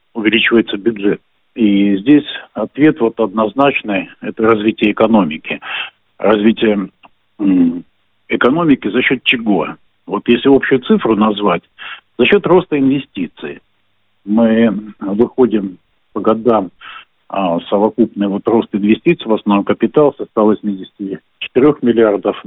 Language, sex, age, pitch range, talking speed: Russian, male, 50-69, 105-125 Hz, 105 wpm